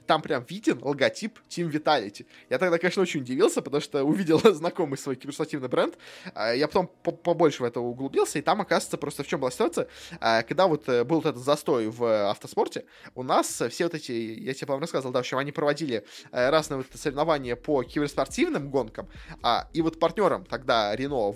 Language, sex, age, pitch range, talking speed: Russian, male, 20-39, 130-170 Hz, 185 wpm